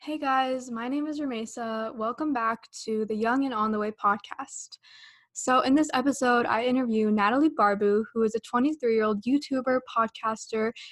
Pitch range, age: 215-250 Hz, 10-29